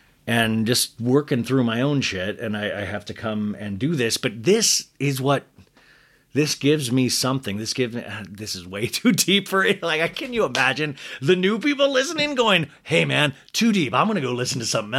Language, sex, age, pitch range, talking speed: English, male, 30-49, 120-175 Hz, 215 wpm